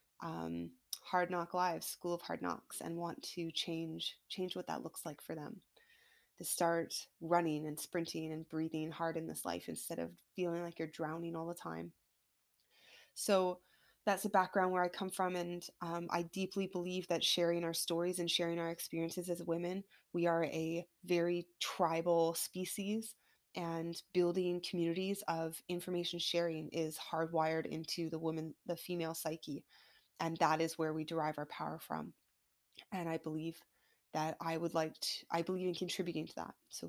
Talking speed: 170 wpm